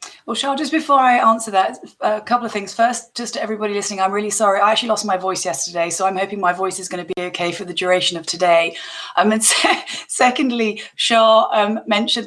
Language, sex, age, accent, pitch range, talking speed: English, female, 30-49, British, 180-220 Hz, 230 wpm